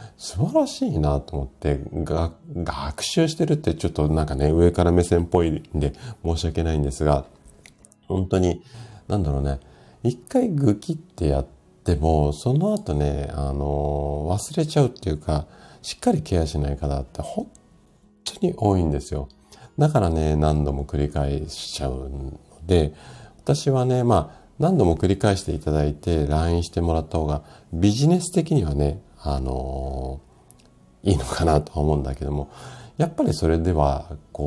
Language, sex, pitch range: Japanese, male, 70-95 Hz